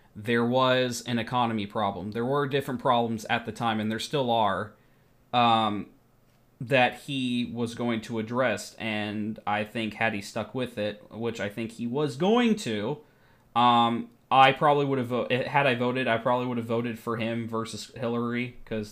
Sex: male